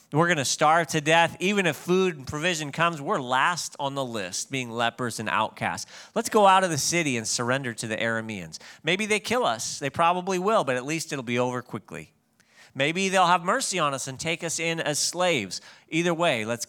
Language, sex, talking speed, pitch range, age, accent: English, male, 220 wpm, 140-215 Hz, 40-59, American